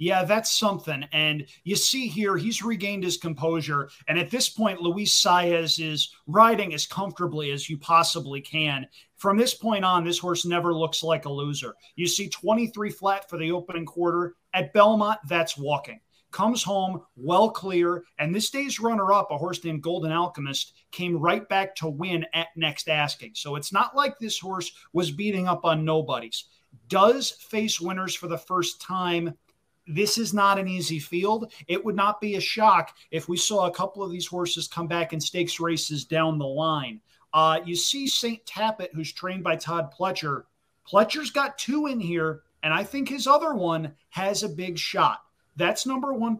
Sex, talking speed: male, 185 wpm